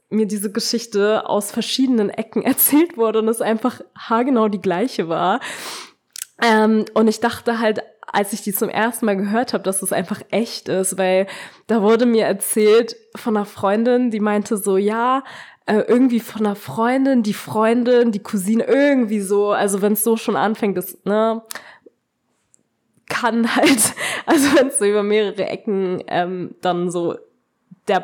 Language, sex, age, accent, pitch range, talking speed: German, female, 20-39, German, 190-230 Hz, 165 wpm